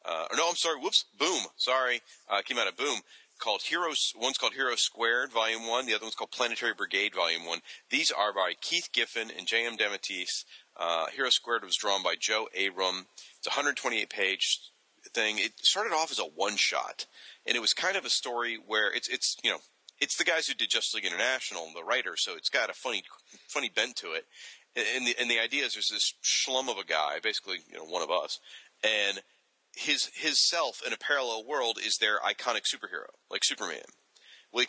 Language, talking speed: English, 205 wpm